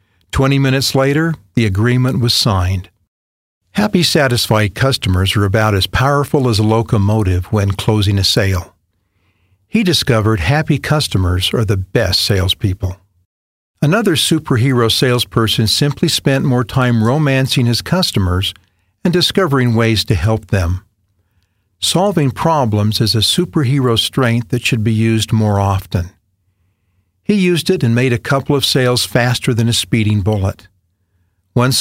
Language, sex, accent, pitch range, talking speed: English, male, American, 95-130 Hz, 135 wpm